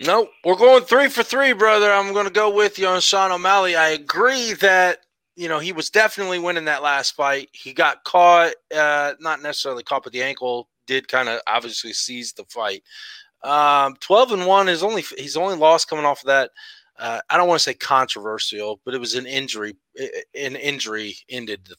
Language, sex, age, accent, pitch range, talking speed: English, male, 30-49, American, 140-215 Hz, 205 wpm